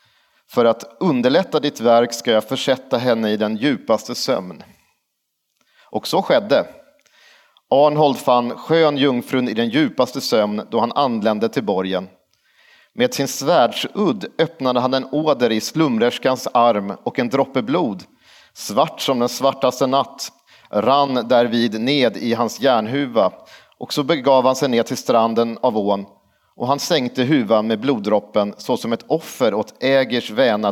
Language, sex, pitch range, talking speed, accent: Swedish, male, 115-135 Hz, 150 wpm, native